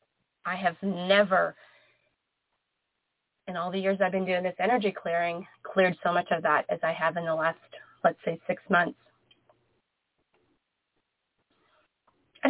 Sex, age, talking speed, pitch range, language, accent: female, 30-49, 140 wpm, 175-240 Hz, English, American